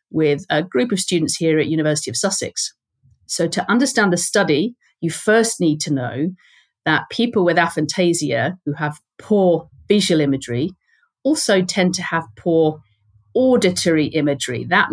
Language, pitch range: English, 150-200 Hz